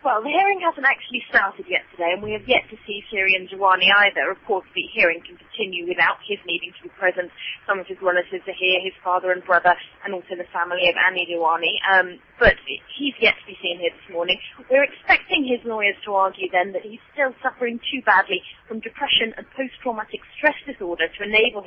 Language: English